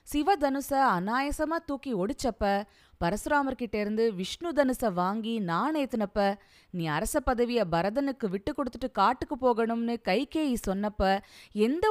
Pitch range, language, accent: 185-275 Hz, Tamil, native